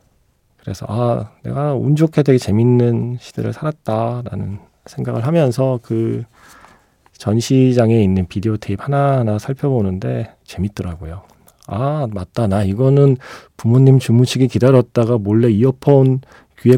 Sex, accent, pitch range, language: male, native, 100-135 Hz, Korean